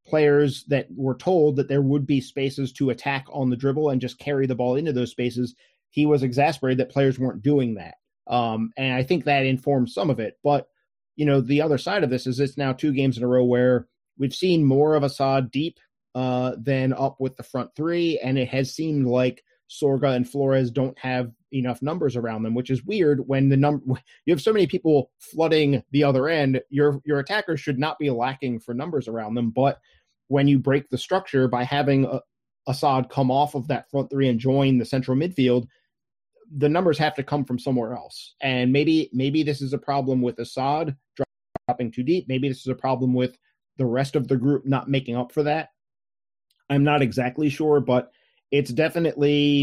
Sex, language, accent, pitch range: male, English, American, 130-145 Hz